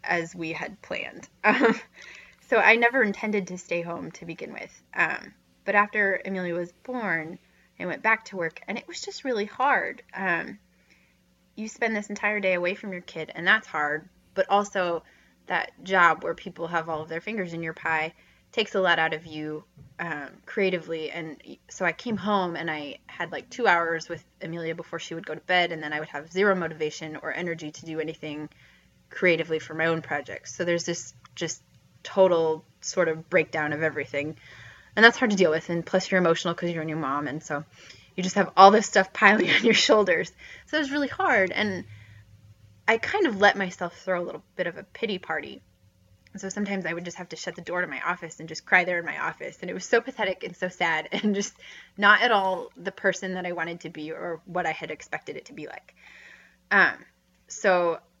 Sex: female